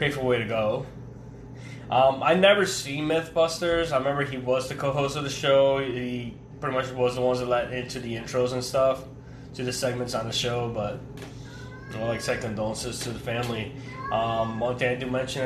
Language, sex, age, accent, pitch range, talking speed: English, male, 20-39, American, 120-135 Hz, 200 wpm